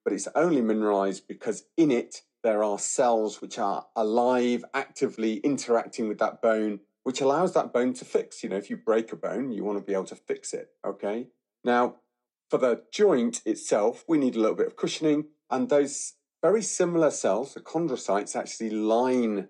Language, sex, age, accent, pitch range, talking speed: English, male, 40-59, British, 105-140 Hz, 190 wpm